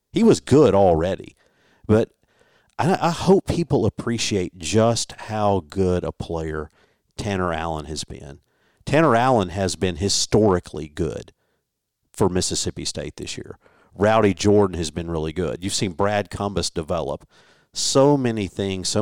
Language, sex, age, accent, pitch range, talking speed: English, male, 50-69, American, 85-110 Hz, 140 wpm